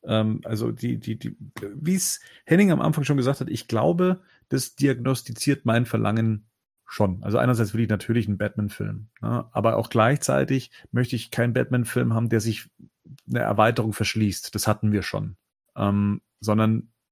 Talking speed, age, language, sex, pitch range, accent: 160 wpm, 40-59, German, male, 110-130 Hz, German